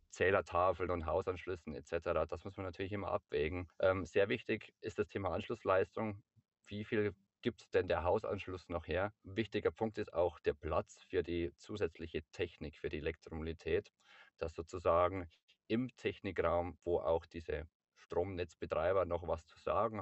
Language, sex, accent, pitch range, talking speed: German, male, German, 85-100 Hz, 145 wpm